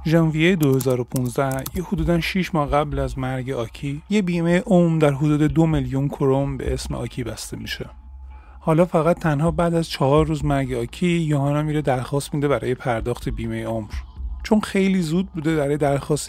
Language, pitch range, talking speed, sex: Persian, 130-165 Hz, 170 wpm, male